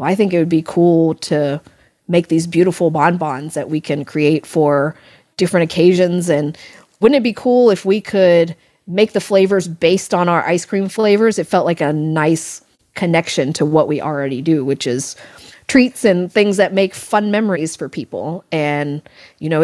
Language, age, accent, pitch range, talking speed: English, 30-49, American, 160-200 Hz, 185 wpm